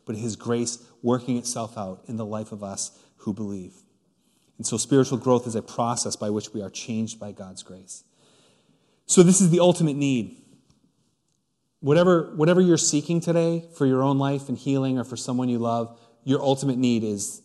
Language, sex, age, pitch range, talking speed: English, male, 30-49, 115-150 Hz, 185 wpm